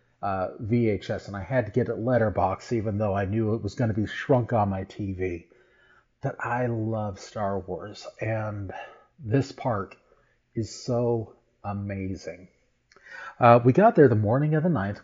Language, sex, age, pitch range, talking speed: English, male, 40-59, 100-120 Hz, 170 wpm